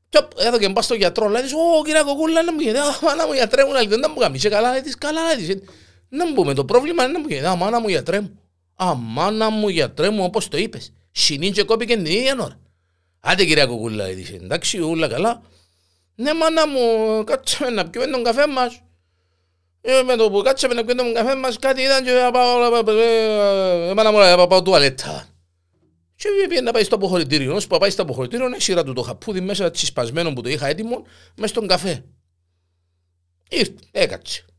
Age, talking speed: 50-69, 100 wpm